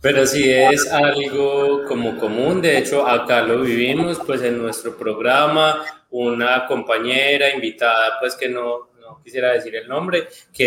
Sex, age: male, 20-39